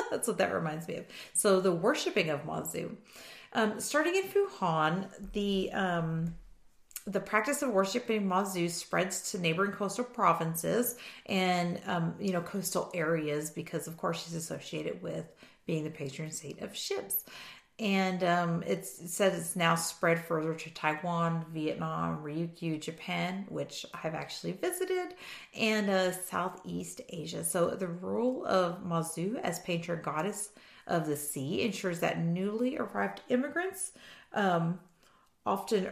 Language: English